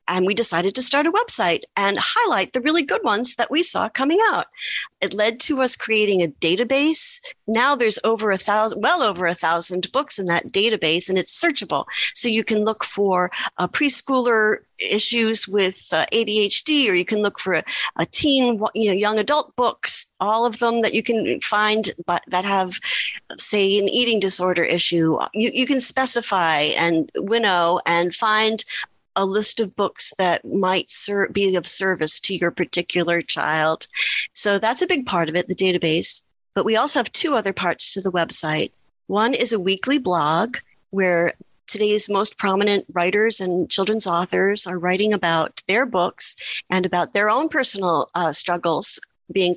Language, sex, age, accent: English, female, 40-59, American